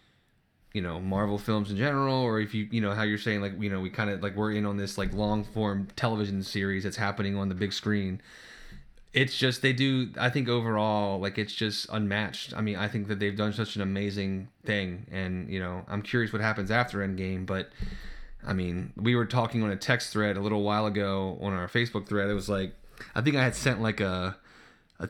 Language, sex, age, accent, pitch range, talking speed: English, male, 20-39, American, 100-115 Hz, 230 wpm